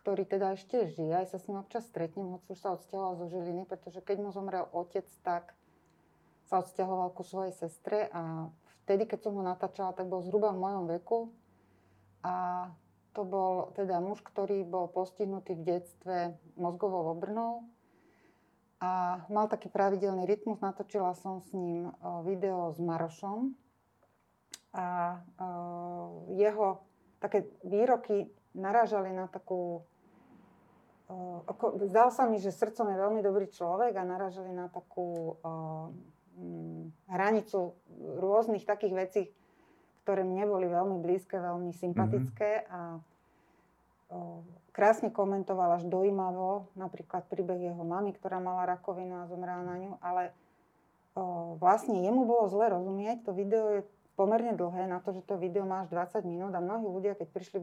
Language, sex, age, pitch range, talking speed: Slovak, female, 30-49, 180-200 Hz, 145 wpm